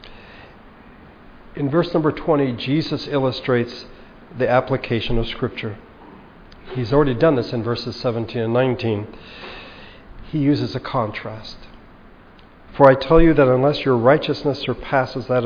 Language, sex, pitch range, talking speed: English, male, 115-145 Hz, 130 wpm